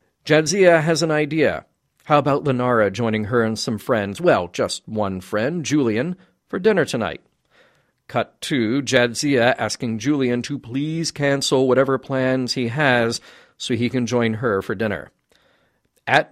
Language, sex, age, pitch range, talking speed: English, male, 40-59, 115-145 Hz, 145 wpm